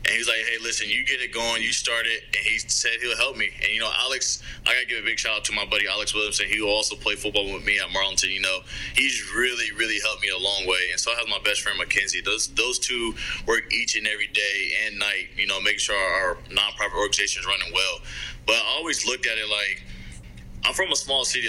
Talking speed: 265 wpm